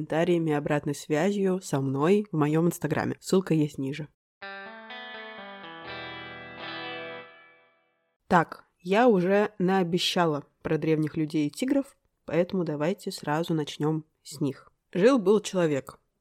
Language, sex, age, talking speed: Russian, female, 20-39, 105 wpm